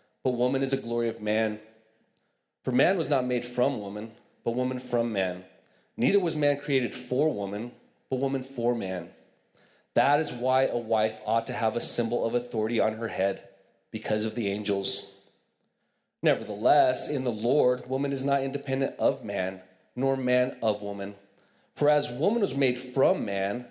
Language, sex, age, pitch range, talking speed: English, male, 30-49, 110-140 Hz, 170 wpm